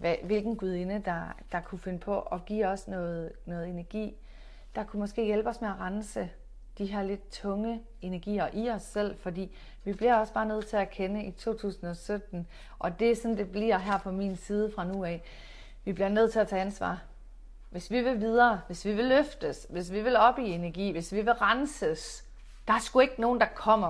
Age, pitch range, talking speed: 30-49, 180-225 Hz, 215 wpm